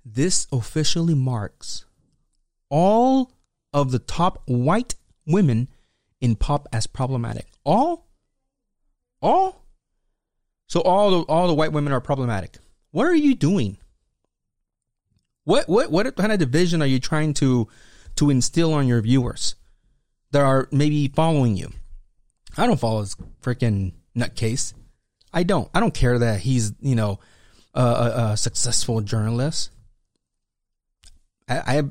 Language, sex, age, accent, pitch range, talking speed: English, male, 30-49, American, 110-140 Hz, 130 wpm